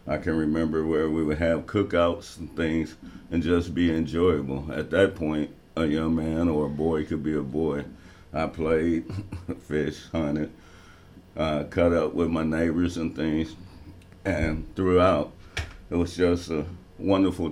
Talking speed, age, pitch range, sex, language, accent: 160 wpm, 60-79, 75-90 Hz, male, English, American